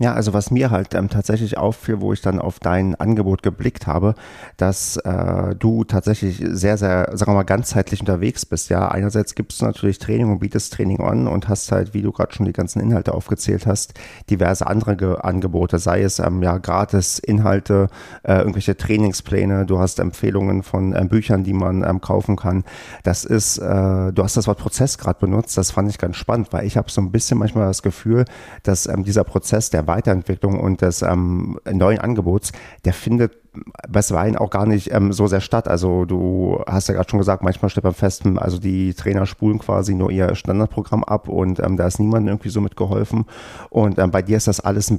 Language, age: German, 40-59